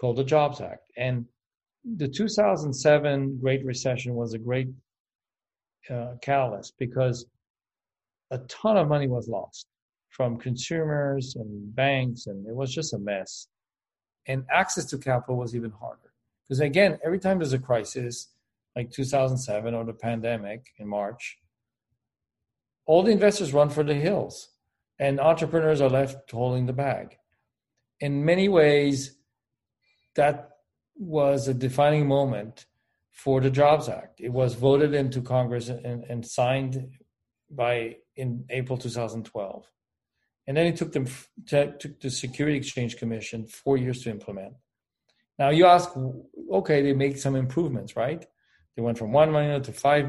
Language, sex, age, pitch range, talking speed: English, male, 50-69, 120-145 Hz, 145 wpm